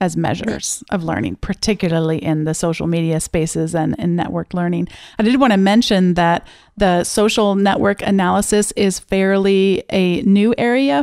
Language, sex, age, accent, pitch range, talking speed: English, female, 30-49, American, 185-225 Hz, 150 wpm